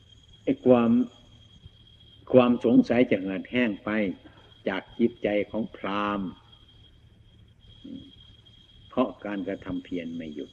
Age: 60-79